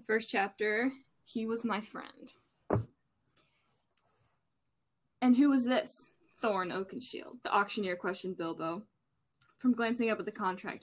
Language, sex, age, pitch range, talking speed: English, female, 10-29, 195-240 Hz, 120 wpm